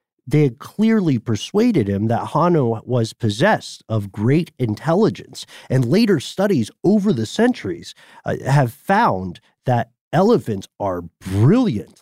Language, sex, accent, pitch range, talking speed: English, male, American, 110-150 Hz, 125 wpm